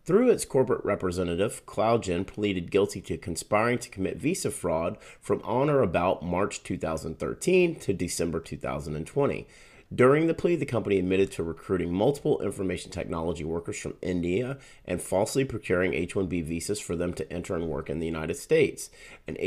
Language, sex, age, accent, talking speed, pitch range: English, male, 30-49, American, 160 wpm, 85-105 Hz